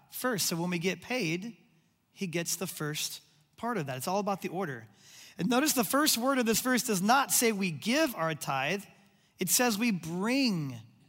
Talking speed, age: 200 wpm, 30-49